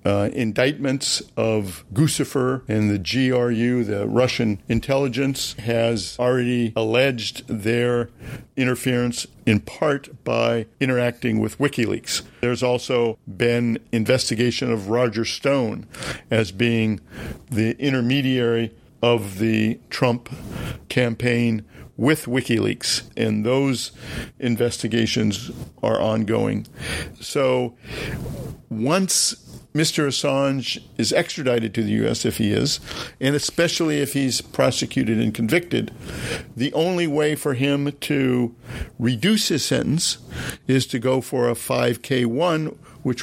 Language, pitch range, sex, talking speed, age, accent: English, 115-135 Hz, male, 110 wpm, 50-69, American